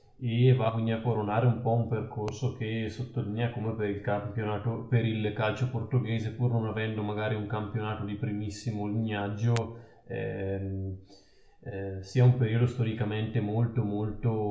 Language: Italian